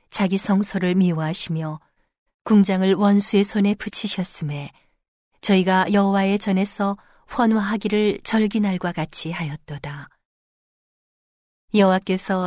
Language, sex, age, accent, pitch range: Korean, female, 40-59, native, 170-205 Hz